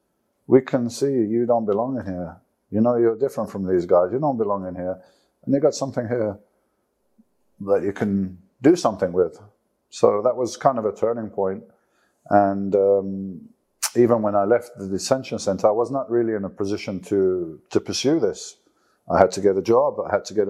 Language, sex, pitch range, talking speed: English, male, 100-120 Hz, 205 wpm